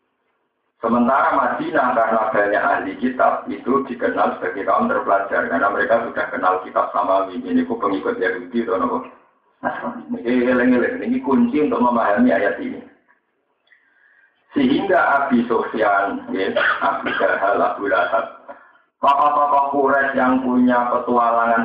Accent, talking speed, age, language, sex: native, 115 wpm, 50-69, Indonesian, male